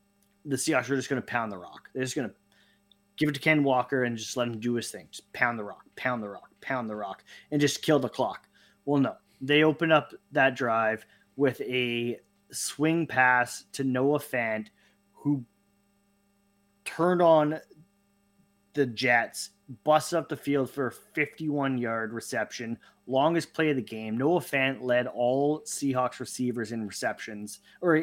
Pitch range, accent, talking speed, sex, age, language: 115-145 Hz, American, 175 wpm, male, 20-39, English